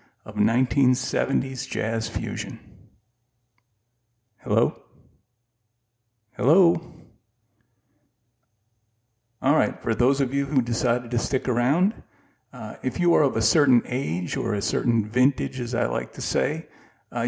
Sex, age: male, 40-59